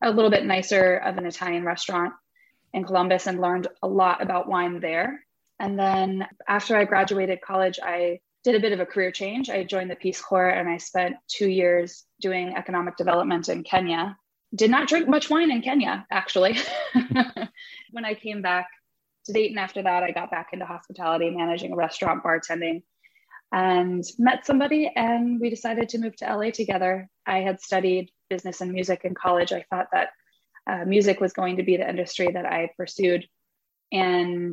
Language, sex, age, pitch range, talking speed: English, female, 20-39, 175-205 Hz, 180 wpm